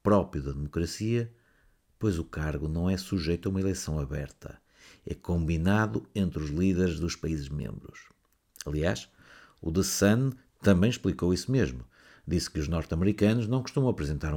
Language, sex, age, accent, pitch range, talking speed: Portuguese, male, 50-69, Portuguese, 80-115 Hz, 150 wpm